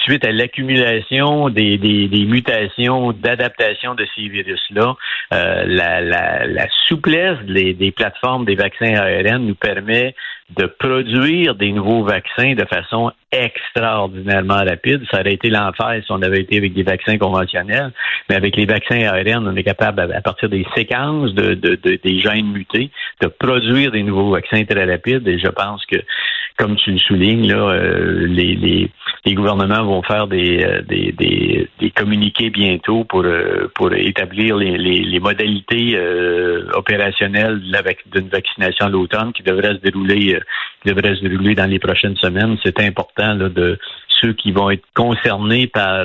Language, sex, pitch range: French, male, 95-115 Hz